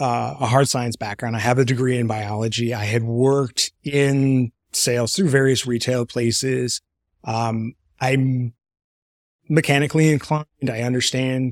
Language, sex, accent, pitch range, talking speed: English, male, American, 120-145 Hz, 135 wpm